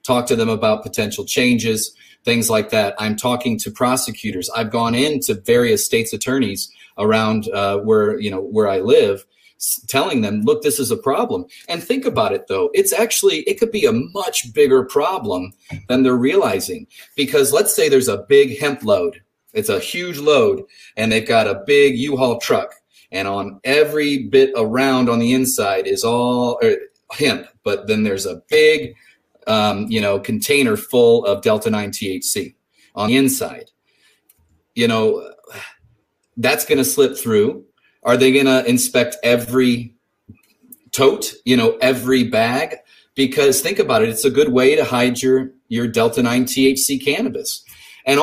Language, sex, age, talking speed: English, male, 30-49, 160 wpm